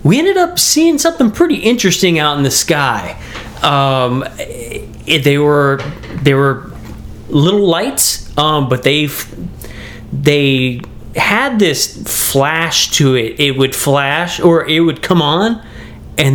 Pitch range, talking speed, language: 130-175 Hz, 135 wpm, English